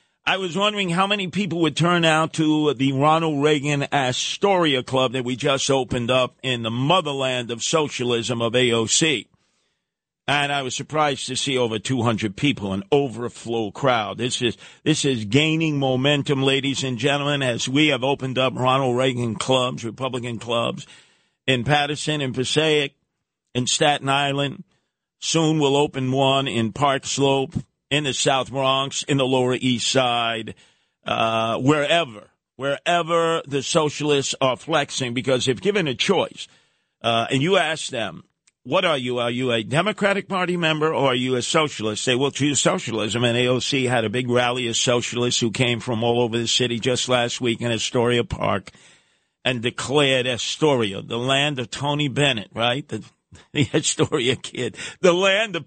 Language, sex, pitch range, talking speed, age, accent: English, male, 120-150 Hz, 165 wpm, 50-69, American